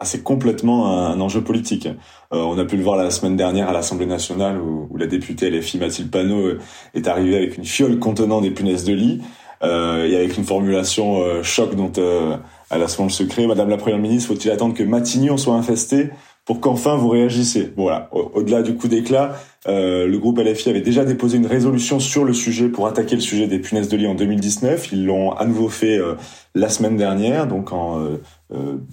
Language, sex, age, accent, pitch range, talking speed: French, male, 30-49, French, 95-120 Hz, 210 wpm